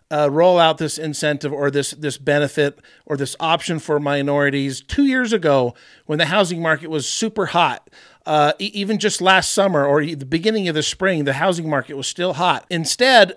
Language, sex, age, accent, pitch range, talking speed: English, male, 50-69, American, 150-205 Hz, 195 wpm